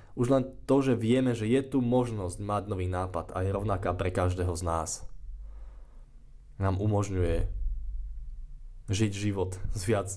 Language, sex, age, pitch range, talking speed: Slovak, male, 20-39, 90-115 Hz, 150 wpm